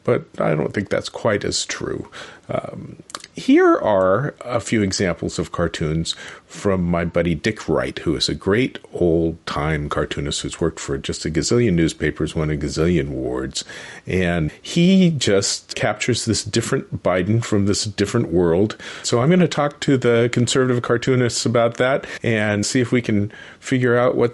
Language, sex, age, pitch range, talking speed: English, male, 40-59, 95-120 Hz, 170 wpm